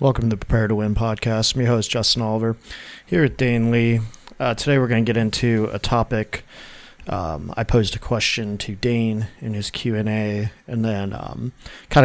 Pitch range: 105-120 Hz